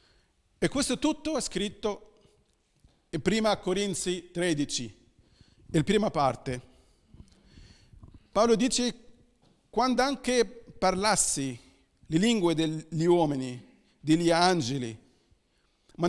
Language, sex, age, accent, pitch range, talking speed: Italian, male, 40-59, native, 145-210 Hz, 95 wpm